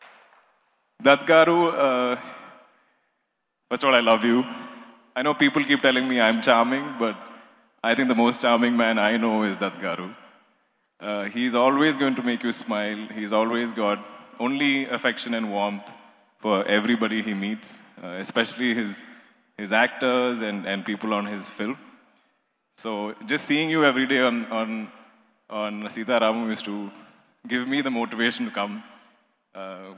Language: Telugu